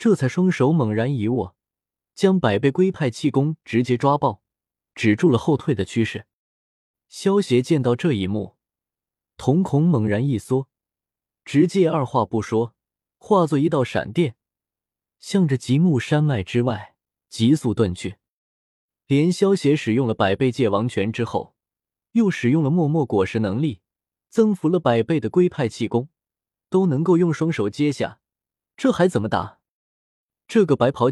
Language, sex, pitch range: Chinese, male, 110-165 Hz